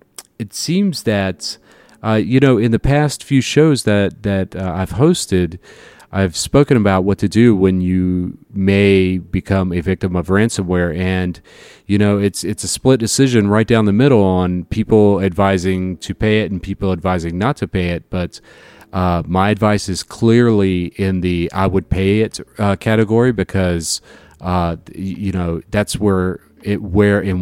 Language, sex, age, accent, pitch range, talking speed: English, male, 40-59, American, 90-110 Hz, 170 wpm